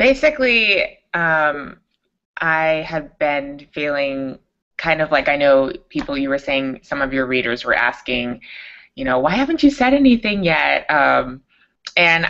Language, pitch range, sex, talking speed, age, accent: English, 135-185 Hz, female, 150 wpm, 20-39, American